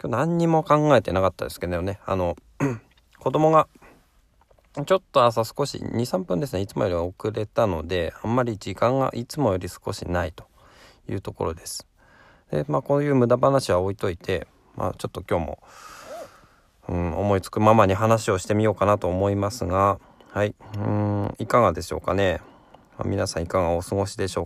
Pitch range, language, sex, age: 95-130 Hz, Japanese, male, 20-39